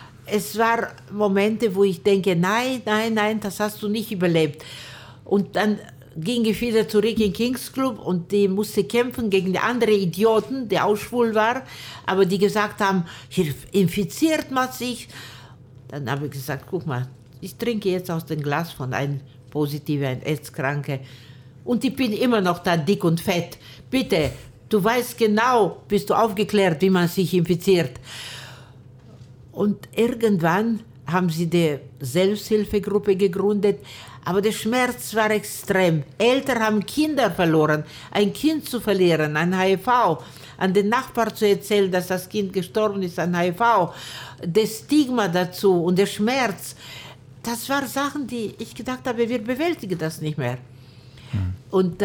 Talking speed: 155 wpm